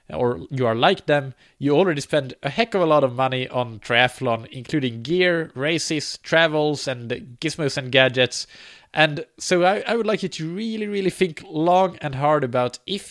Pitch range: 120-155 Hz